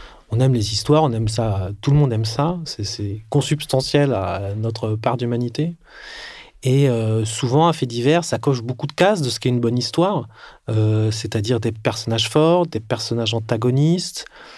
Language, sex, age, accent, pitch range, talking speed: French, male, 30-49, French, 115-150 Hz, 180 wpm